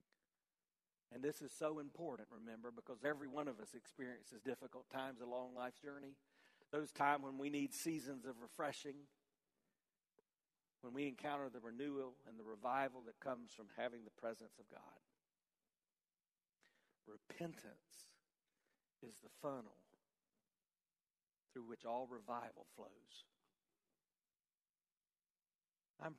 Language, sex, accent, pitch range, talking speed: English, male, American, 120-150 Hz, 115 wpm